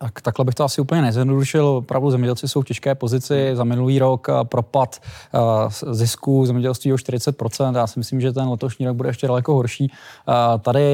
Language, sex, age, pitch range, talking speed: Czech, male, 20-39, 125-140 Hz, 175 wpm